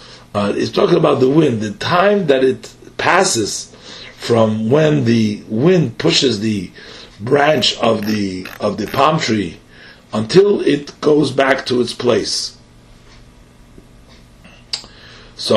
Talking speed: 125 wpm